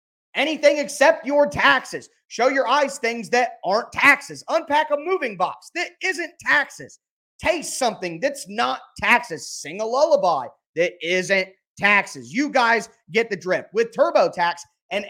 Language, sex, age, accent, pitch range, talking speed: English, male, 30-49, American, 190-240 Hz, 145 wpm